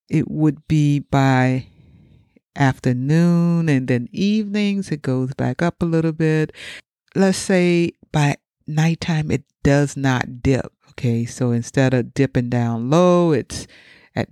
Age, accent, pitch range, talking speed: 60-79, American, 125-170 Hz, 135 wpm